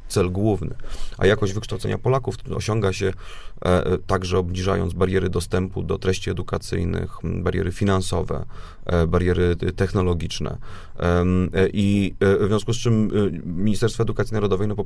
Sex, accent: male, native